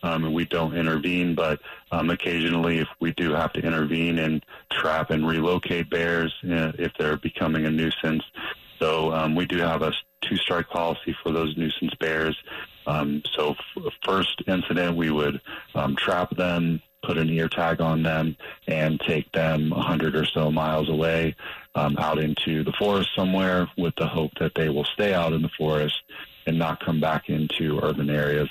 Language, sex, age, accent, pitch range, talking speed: English, male, 30-49, American, 75-85 Hz, 175 wpm